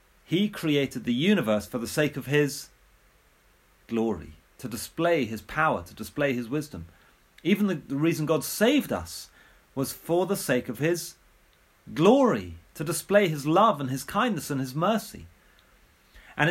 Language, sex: English, male